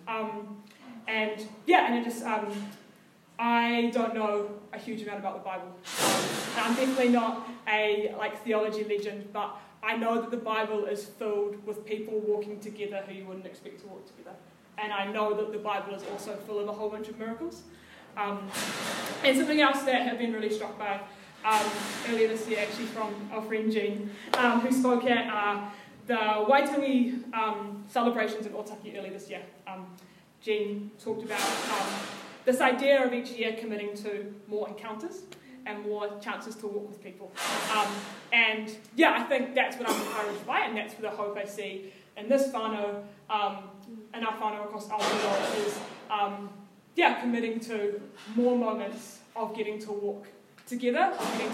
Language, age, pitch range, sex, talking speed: English, 20-39, 205-225 Hz, female, 175 wpm